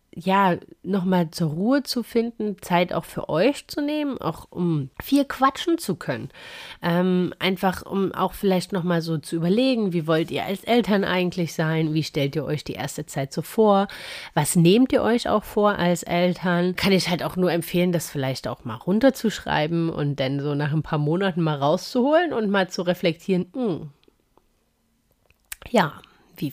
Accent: German